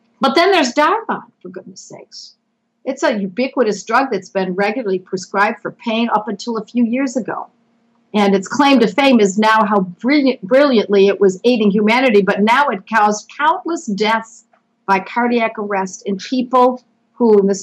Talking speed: 170 wpm